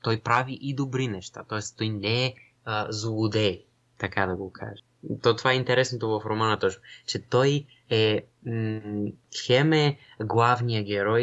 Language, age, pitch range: Bulgarian, 20-39, 105-125 Hz